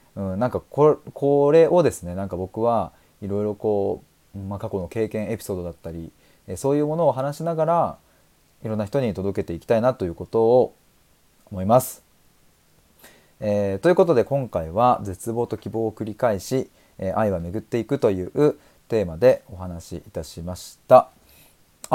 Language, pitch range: Japanese, 95-135 Hz